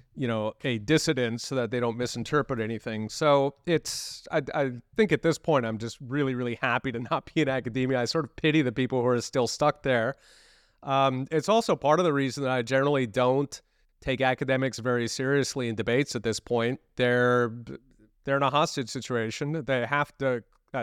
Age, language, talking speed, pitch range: 30-49, English, 185 wpm, 115-140 Hz